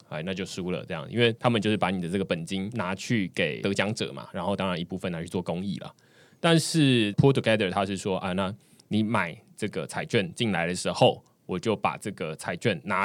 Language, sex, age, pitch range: Chinese, male, 20-39, 95-130 Hz